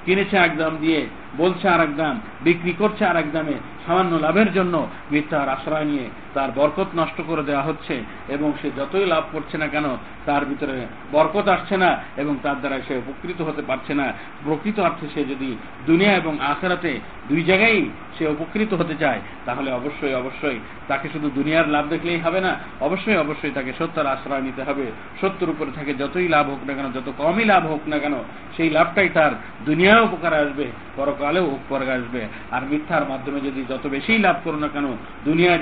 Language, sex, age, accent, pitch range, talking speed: Bengali, male, 50-69, native, 140-170 Hz, 180 wpm